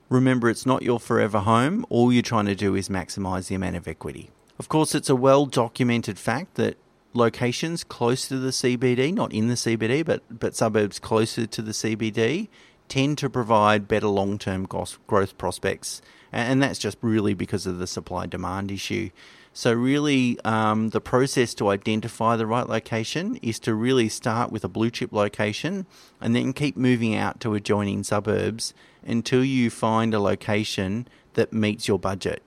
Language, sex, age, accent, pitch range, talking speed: English, male, 30-49, Australian, 105-125 Hz, 170 wpm